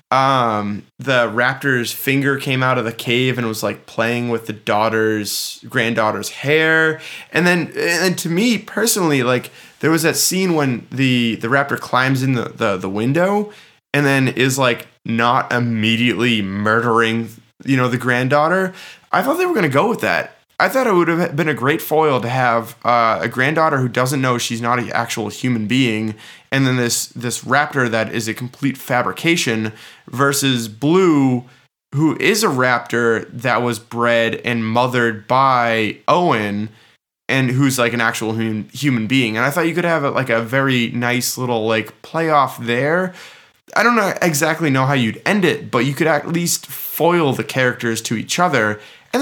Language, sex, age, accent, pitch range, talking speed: English, male, 20-39, American, 115-145 Hz, 175 wpm